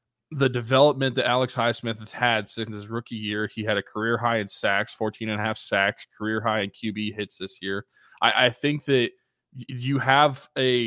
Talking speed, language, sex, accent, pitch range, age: 205 wpm, English, male, American, 110-130 Hz, 20-39